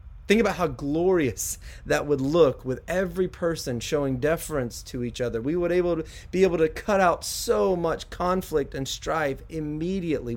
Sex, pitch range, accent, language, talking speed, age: male, 120-170 Hz, American, English, 160 wpm, 30-49